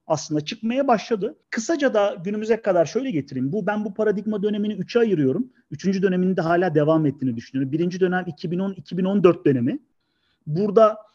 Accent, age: native, 40-59